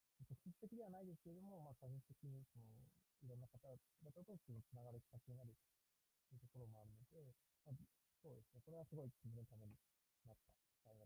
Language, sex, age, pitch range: Japanese, male, 40-59, 115-140 Hz